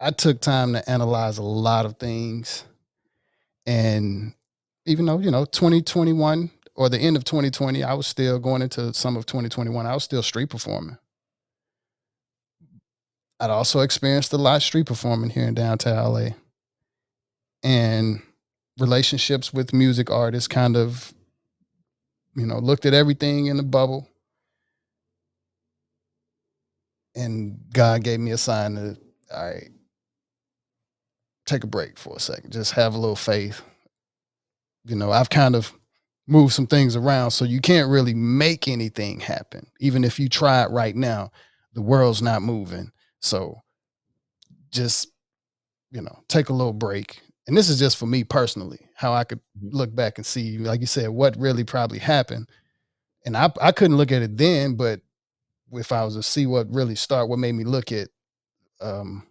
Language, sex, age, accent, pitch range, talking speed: English, male, 30-49, American, 115-135 Hz, 160 wpm